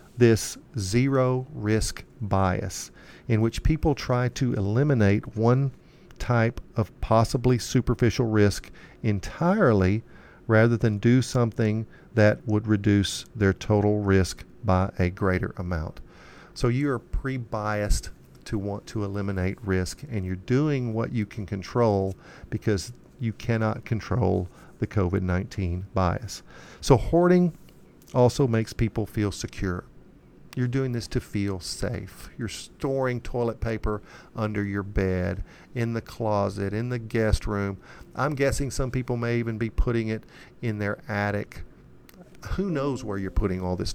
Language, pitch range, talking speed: English, 100-125 Hz, 135 wpm